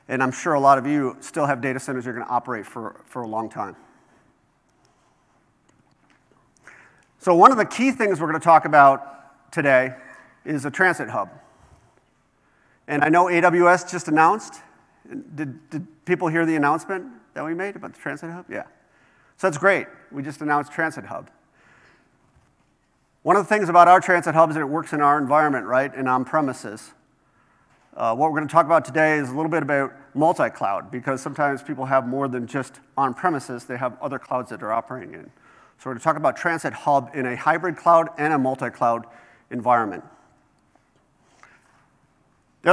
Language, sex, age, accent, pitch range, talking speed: English, male, 40-59, American, 135-165 Hz, 175 wpm